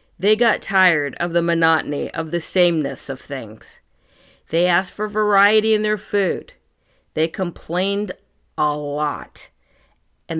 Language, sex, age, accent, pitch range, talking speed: English, female, 50-69, American, 140-195 Hz, 135 wpm